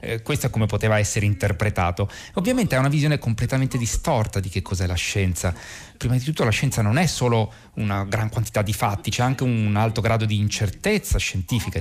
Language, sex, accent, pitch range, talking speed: Italian, male, native, 100-140 Hz, 195 wpm